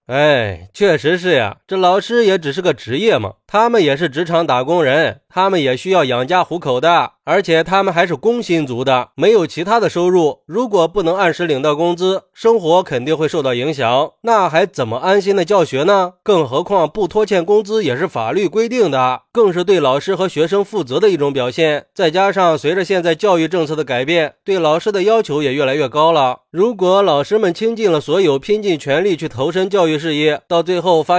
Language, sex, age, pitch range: Chinese, male, 20-39, 150-195 Hz